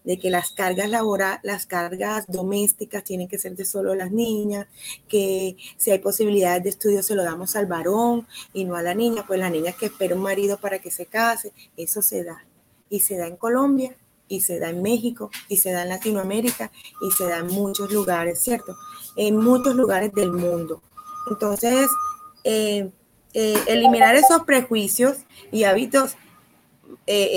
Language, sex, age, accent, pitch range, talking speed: Spanish, female, 30-49, American, 195-245 Hz, 180 wpm